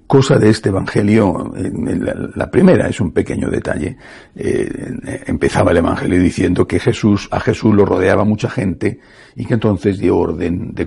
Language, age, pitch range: Spanish, 60-79, 95-125 Hz